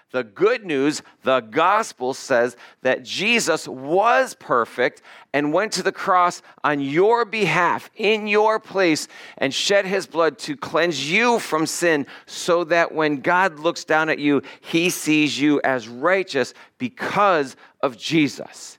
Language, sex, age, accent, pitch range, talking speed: English, male, 50-69, American, 110-165 Hz, 145 wpm